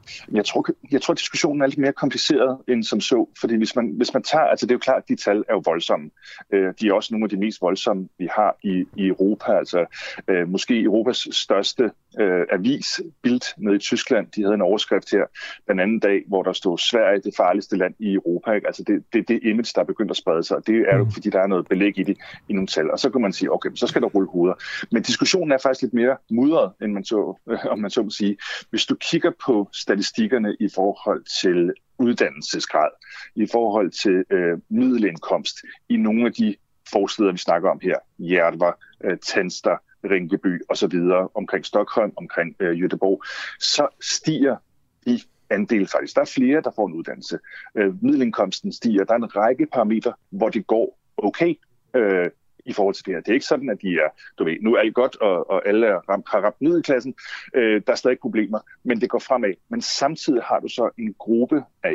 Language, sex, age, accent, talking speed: Danish, male, 30-49, native, 215 wpm